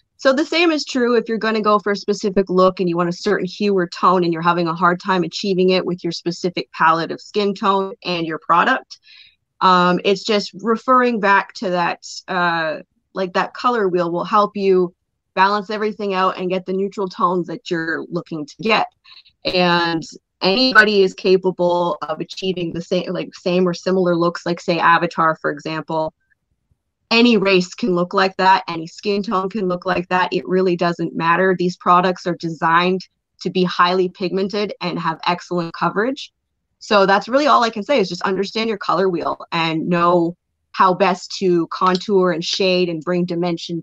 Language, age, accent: English, 20-39, American